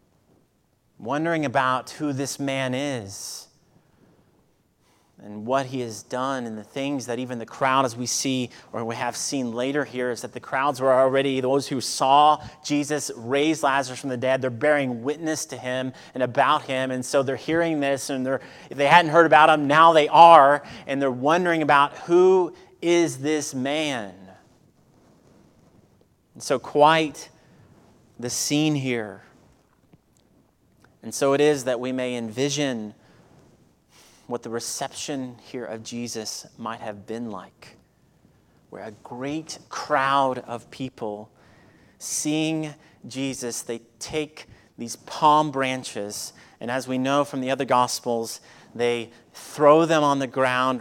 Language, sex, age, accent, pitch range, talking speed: English, male, 30-49, American, 120-145 Hz, 150 wpm